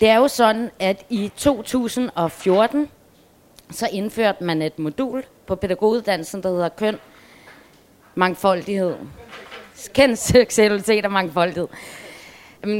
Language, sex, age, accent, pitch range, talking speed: Danish, female, 20-39, native, 170-230 Hz, 110 wpm